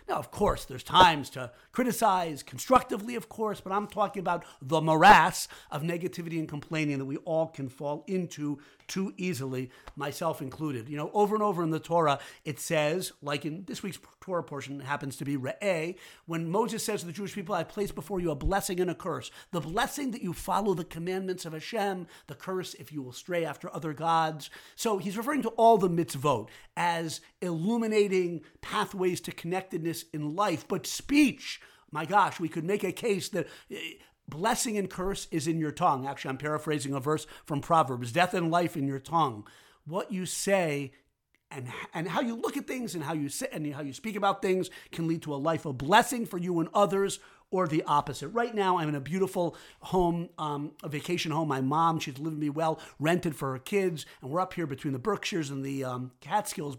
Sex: male